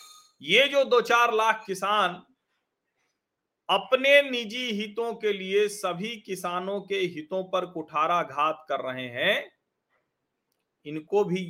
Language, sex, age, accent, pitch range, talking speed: Hindi, male, 40-59, native, 130-195 Hz, 120 wpm